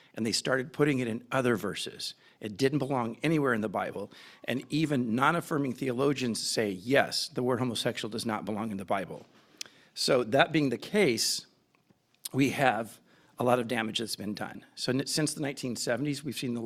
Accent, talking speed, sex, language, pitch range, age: American, 185 wpm, male, English, 125-150 Hz, 50-69